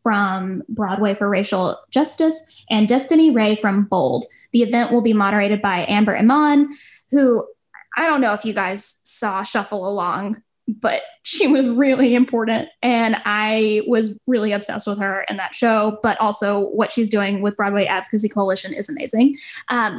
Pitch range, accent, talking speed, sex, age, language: 210-265 Hz, American, 165 wpm, female, 10-29, English